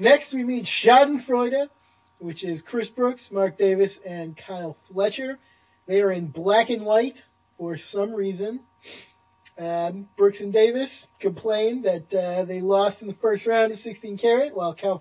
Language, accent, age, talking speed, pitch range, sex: English, American, 20-39, 155 wpm, 185-225 Hz, male